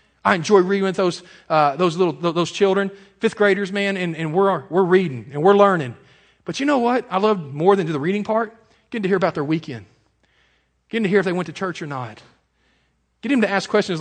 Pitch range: 155-215 Hz